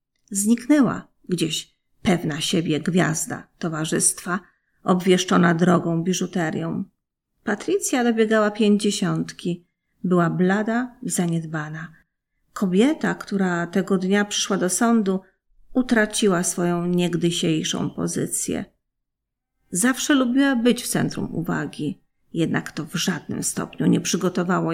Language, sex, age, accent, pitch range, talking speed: Polish, female, 40-59, native, 175-205 Hz, 95 wpm